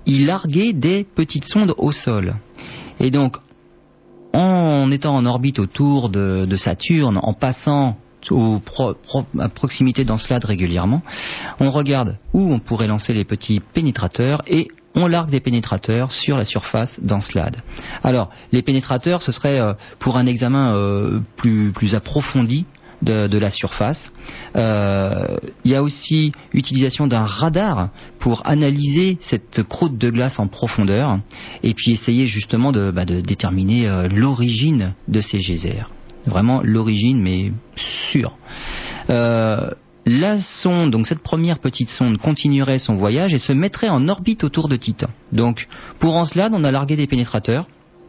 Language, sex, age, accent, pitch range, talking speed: French, male, 40-59, French, 110-145 Hz, 150 wpm